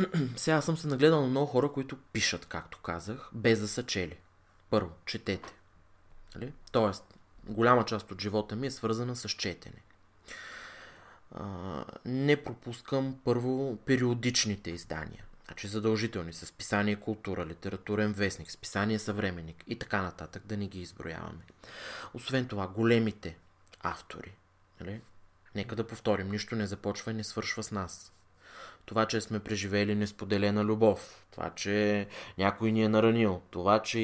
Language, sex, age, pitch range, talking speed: Bulgarian, male, 20-39, 100-115 Hz, 135 wpm